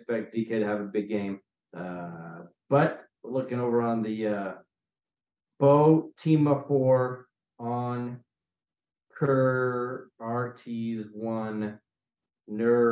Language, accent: English, American